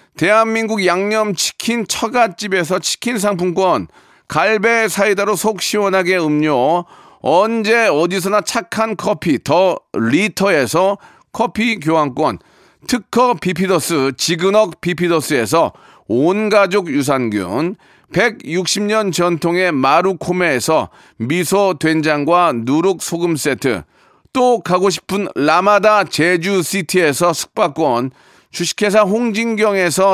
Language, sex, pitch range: Korean, male, 170-220 Hz